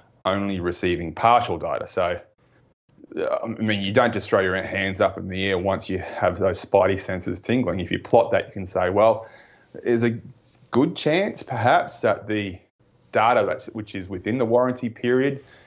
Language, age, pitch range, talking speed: English, 30-49, 95-115 Hz, 180 wpm